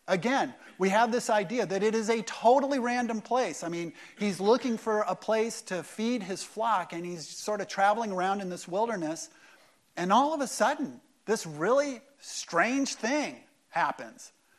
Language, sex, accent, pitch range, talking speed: English, male, American, 160-220 Hz, 175 wpm